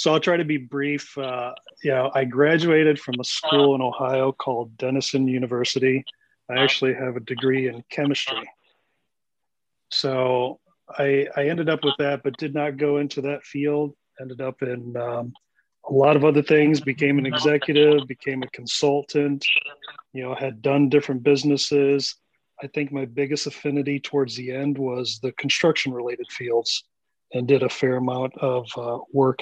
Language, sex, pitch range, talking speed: English, male, 130-145 Hz, 165 wpm